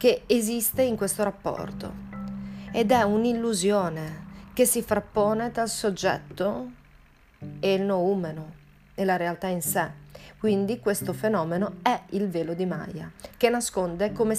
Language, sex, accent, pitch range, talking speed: Italian, female, native, 170-215 Hz, 140 wpm